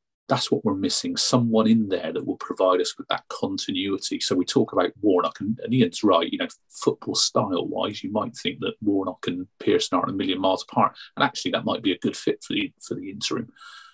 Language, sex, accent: English, male, British